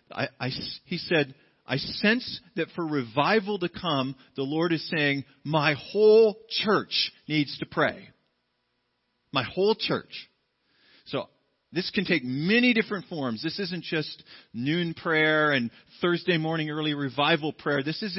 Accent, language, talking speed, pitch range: American, English, 140 wpm, 130-175 Hz